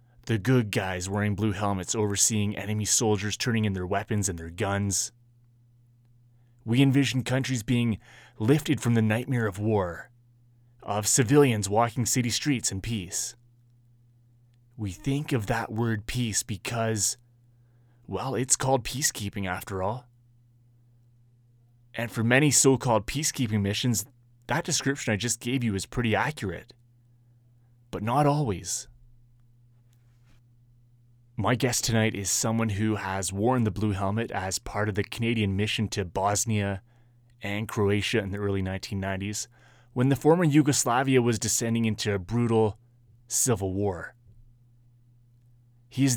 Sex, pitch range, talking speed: male, 105-120 Hz, 130 wpm